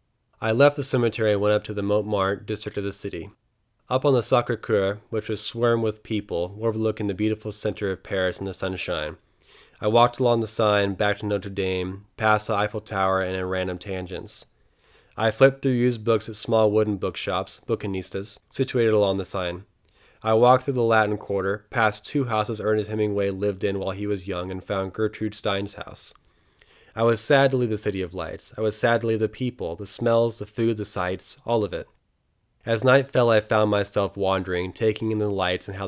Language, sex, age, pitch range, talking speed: English, male, 20-39, 95-110 Hz, 200 wpm